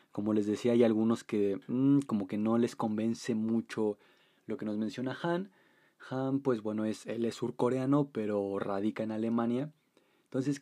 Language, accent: Spanish, Mexican